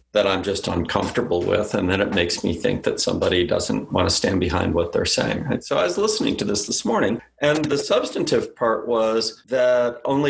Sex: male